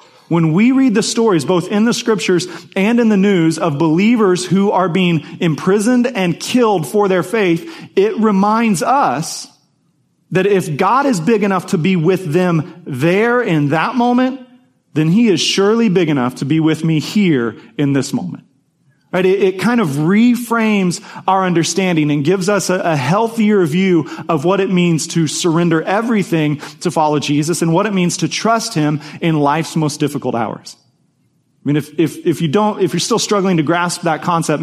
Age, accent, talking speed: 40-59, American, 185 wpm